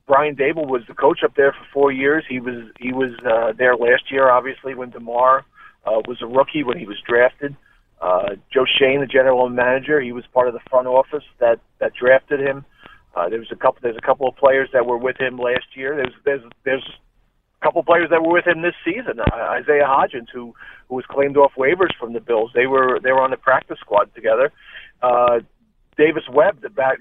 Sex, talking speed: male, 225 wpm